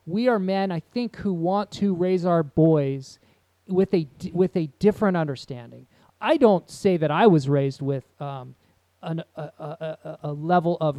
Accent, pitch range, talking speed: American, 145-185 Hz, 180 wpm